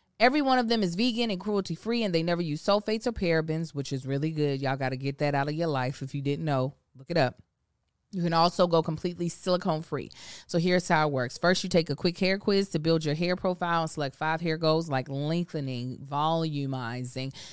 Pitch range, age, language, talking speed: 145-185 Hz, 20-39, English, 225 wpm